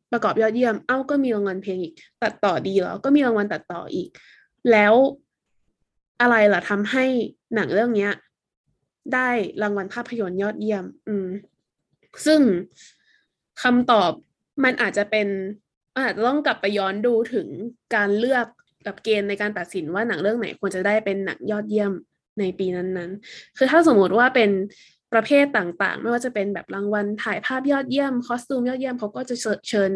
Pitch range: 200-245 Hz